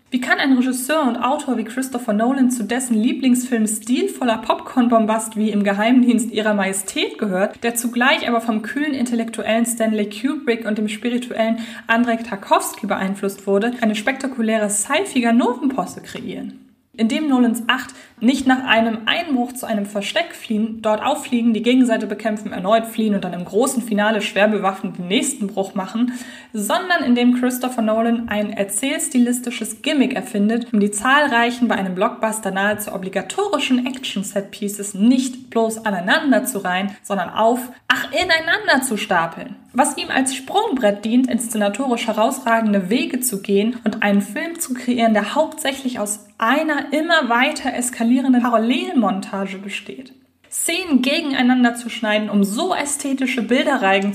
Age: 20-39